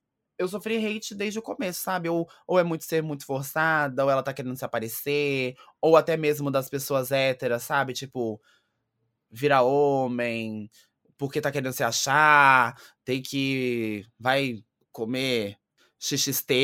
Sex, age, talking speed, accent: male, 20-39, 145 wpm, Brazilian